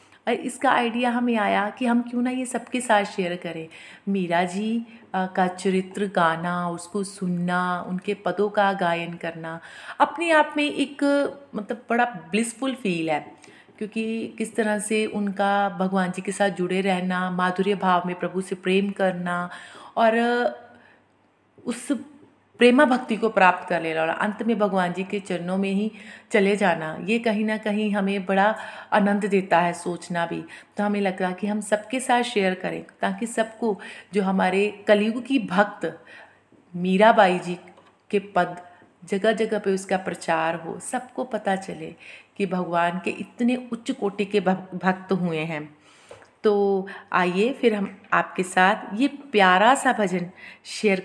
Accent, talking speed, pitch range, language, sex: native, 155 wpm, 180-225 Hz, Hindi, female